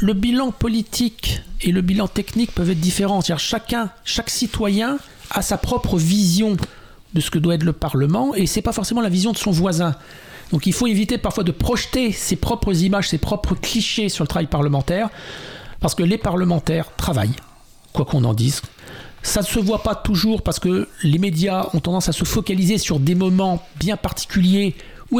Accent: French